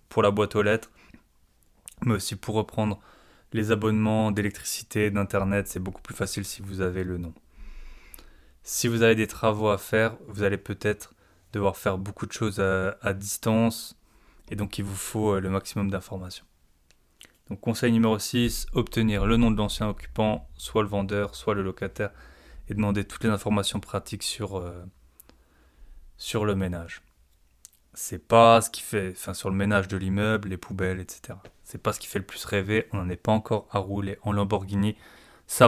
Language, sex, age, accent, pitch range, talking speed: French, male, 20-39, French, 95-110 Hz, 180 wpm